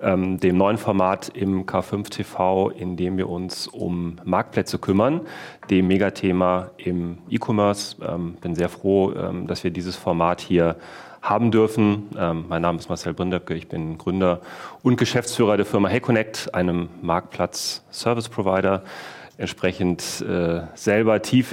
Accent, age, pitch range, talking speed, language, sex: German, 30-49, 90-110 Hz, 145 wpm, German, male